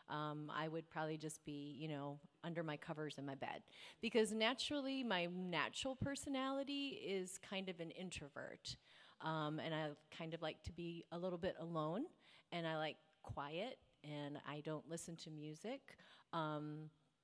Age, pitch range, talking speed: 30-49, 160-205 Hz, 165 wpm